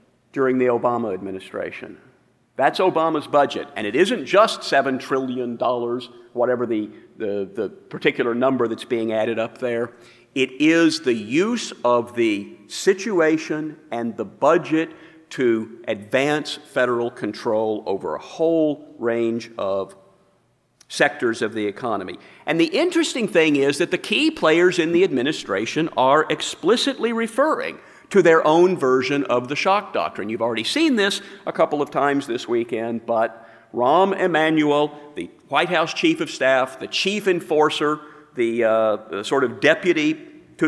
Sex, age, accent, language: male, 50-69, American, English